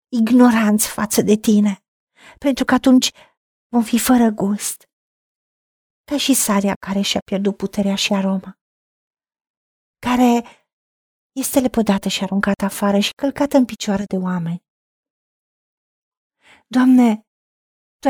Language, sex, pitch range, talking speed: Romanian, female, 195-260 Hz, 115 wpm